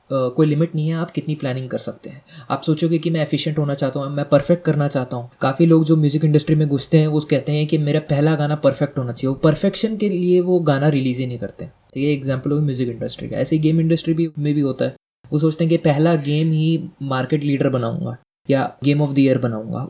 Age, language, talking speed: 20-39, Hindi, 245 wpm